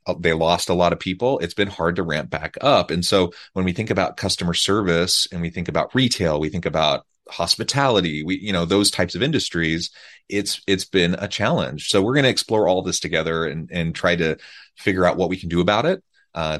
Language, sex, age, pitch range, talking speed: English, male, 30-49, 85-100 Hz, 230 wpm